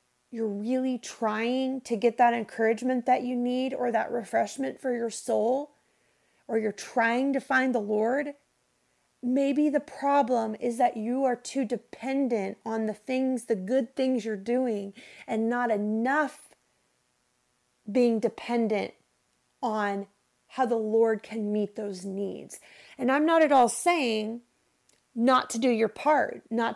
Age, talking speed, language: 30-49, 145 wpm, English